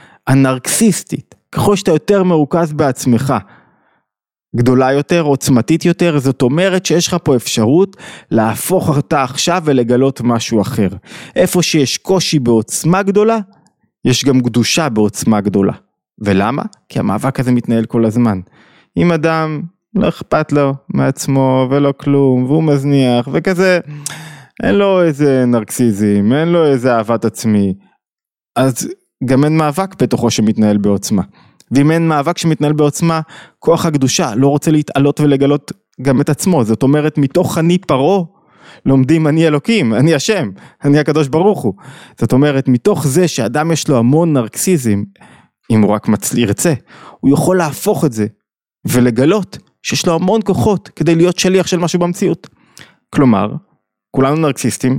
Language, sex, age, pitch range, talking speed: Hebrew, male, 20-39, 125-170 Hz, 140 wpm